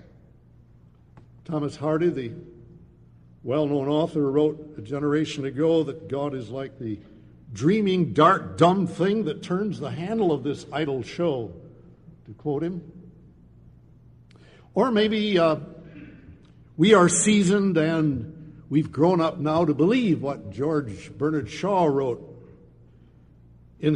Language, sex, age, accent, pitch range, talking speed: English, male, 60-79, American, 110-170 Hz, 120 wpm